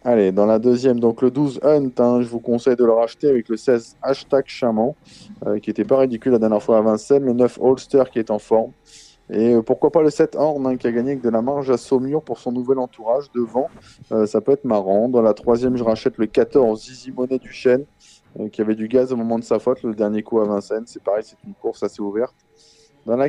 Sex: male